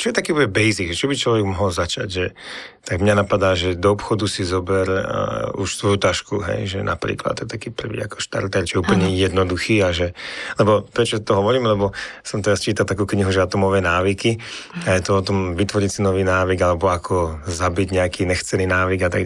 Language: Slovak